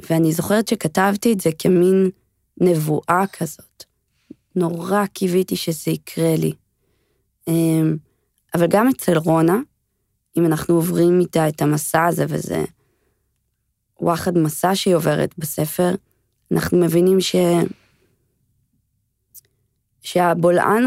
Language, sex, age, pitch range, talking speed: Hebrew, female, 20-39, 140-185 Hz, 100 wpm